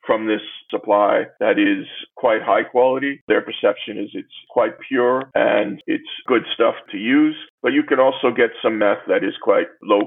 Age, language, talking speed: 40-59, English, 185 wpm